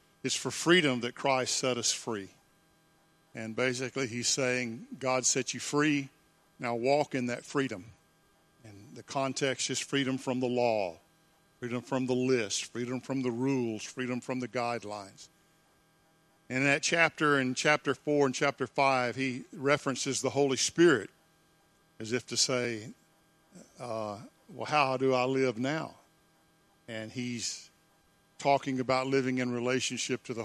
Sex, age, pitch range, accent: male, 50-69, 120-155 Hz, American